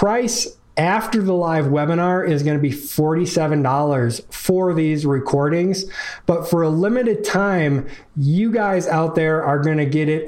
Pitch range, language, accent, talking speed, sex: 145-180 Hz, English, American, 165 wpm, male